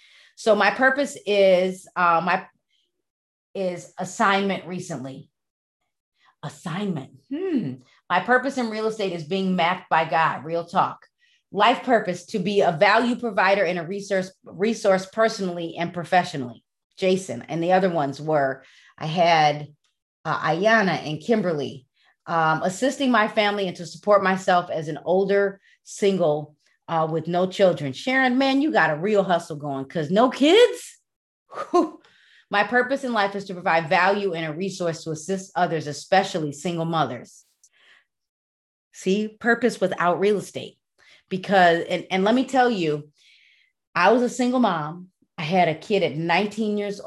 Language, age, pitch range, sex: English, 30-49, 165-215 Hz, female